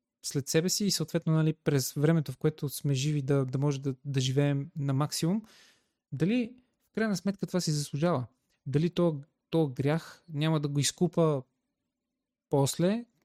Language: Bulgarian